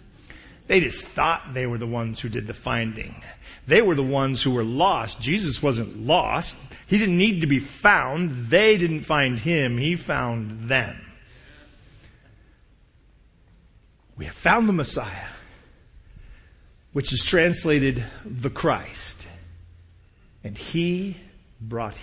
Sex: male